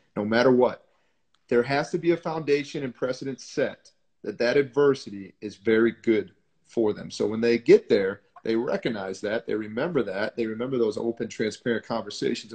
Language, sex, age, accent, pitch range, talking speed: English, male, 30-49, American, 110-130 Hz, 175 wpm